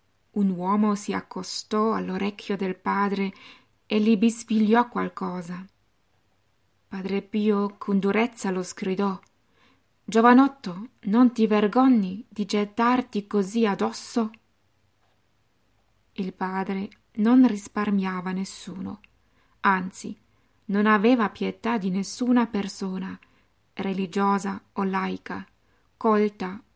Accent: native